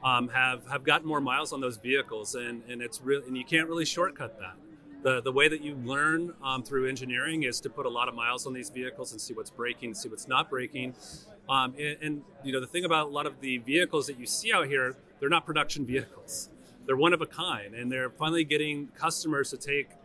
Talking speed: 240 wpm